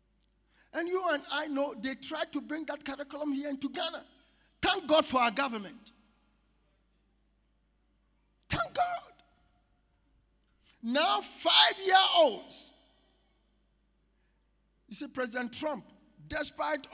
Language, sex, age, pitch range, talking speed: English, male, 50-69, 205-300 Hz, 100 wpm